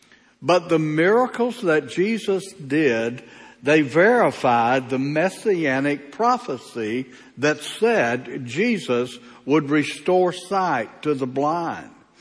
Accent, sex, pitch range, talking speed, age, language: American, male, 135-180 Hz, 100 wpm, 60-79, English